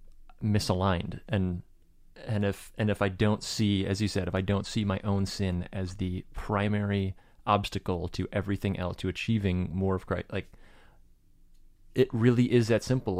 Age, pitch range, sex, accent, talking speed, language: 30-49, 95-120 Hz, male, American, 170 wpm, English